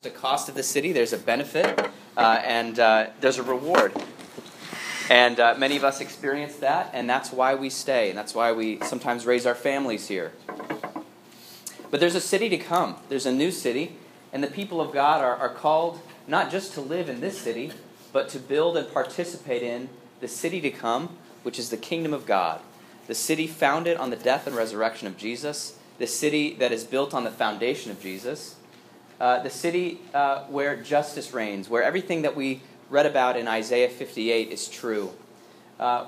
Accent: American